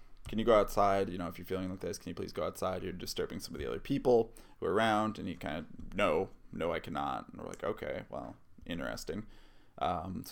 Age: 20-39